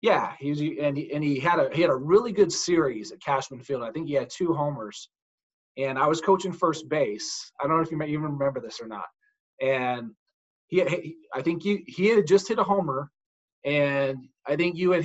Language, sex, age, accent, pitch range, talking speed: English, male, 30-49, American, 145-185 Hz, 235 wpm